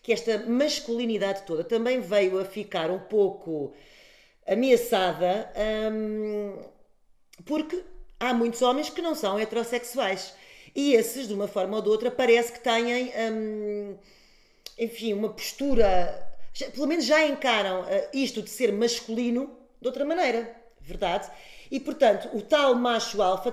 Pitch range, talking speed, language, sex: 195-250 Hz, 135 wpm, Portuguese, female